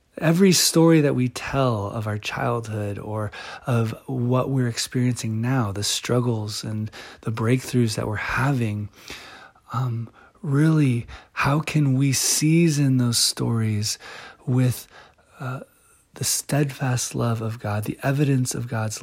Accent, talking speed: American, 130 wpm